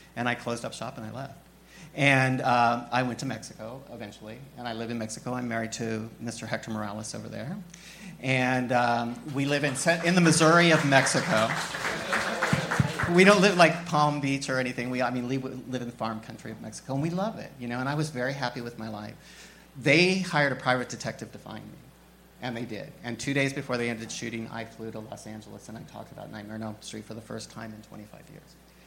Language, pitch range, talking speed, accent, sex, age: English, 115-145 Hz, 225 wpm, American, male, 40-59